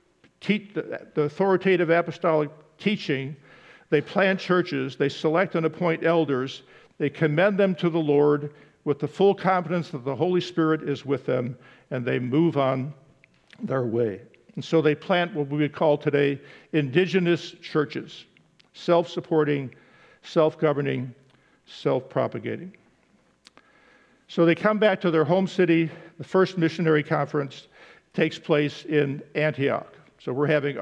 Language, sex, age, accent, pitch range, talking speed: English, male, 50-69, American, 140-170 Hz, 130 wpm